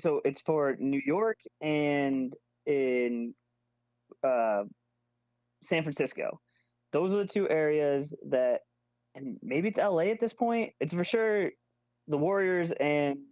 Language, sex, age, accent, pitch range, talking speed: English, male, 20-39, American, 120-165 Hz, 130 wpm